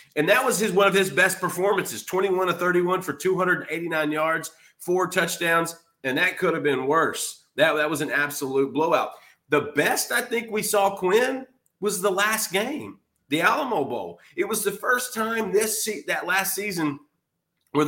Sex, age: male, 30-49